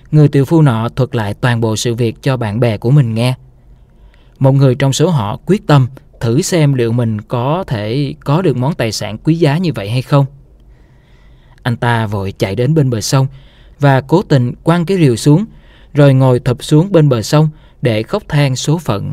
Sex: male